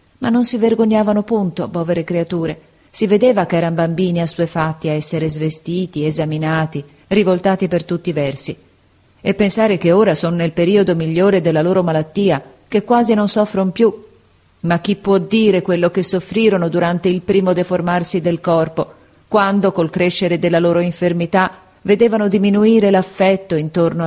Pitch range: 160-200 Hz